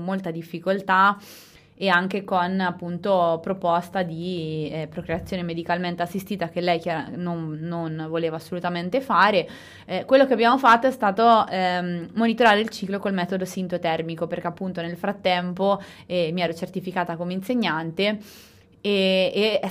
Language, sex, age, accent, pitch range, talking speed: Italian, female, 20-39, native, 175-205 Hz, 140 wpm